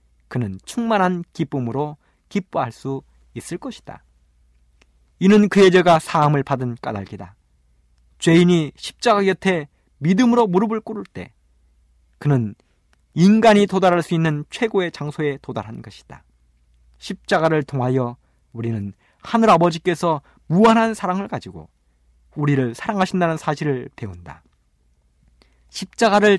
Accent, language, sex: native, Korean, male